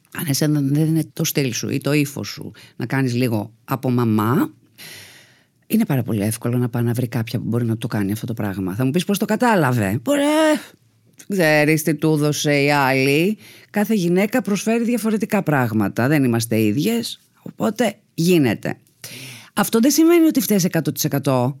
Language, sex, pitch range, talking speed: Greek, female, 125-205 Hz, 165 wpm